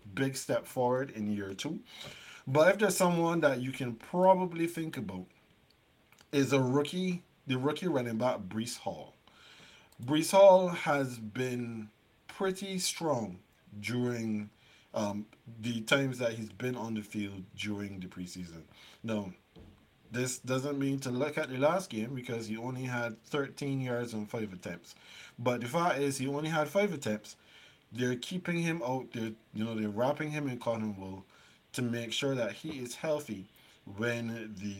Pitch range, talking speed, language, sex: 110-145 Hz, 160 wpm, English, male